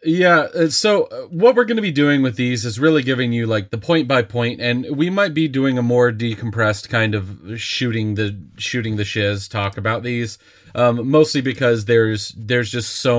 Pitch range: 105-130 Hz